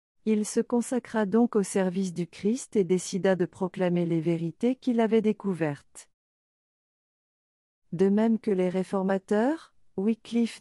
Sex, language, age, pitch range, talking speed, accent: female, French, 40-59, 175-225 Hz, 130 wpm, French